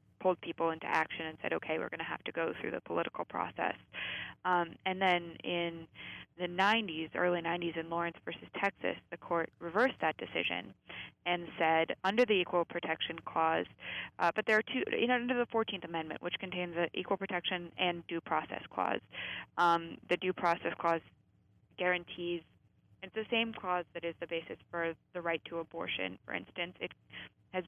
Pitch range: 165-185 Hz